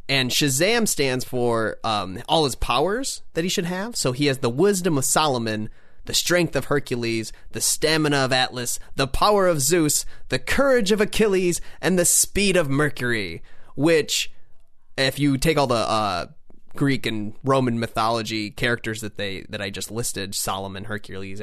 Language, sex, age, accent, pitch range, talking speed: English, male, 30-49, American, 110-150 Hz, 170 wpm